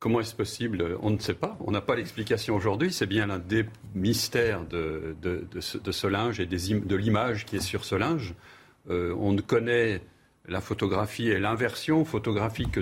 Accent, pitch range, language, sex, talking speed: French, 95-120 Hz, French, male, 200 wpm